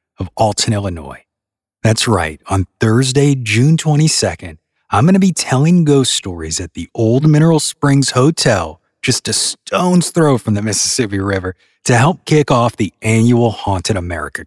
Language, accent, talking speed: English, American, 155 wpm